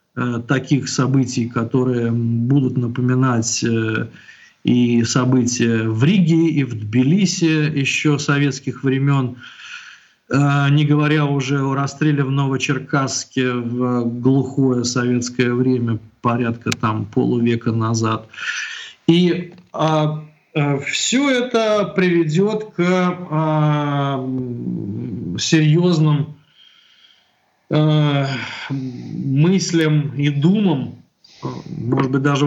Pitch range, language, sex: 120-150 Hz, English, male